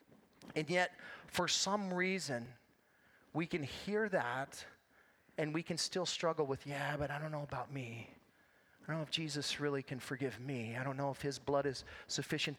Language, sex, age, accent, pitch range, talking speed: English, male, 30-49, American, 135-180 Hz, 185 wpm